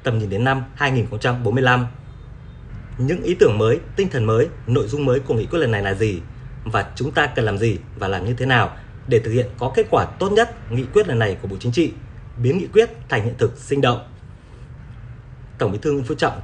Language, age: Vietnamese, 20-39